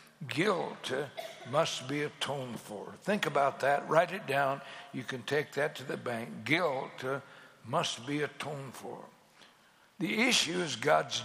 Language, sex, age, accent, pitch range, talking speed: Hindi, male, 60-79, American, 135-170 Hz, 145 wpm